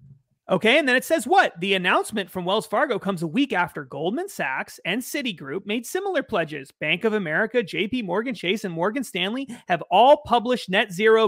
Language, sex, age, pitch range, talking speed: English, male, 30-49, 180-255 Hz, 190 wpm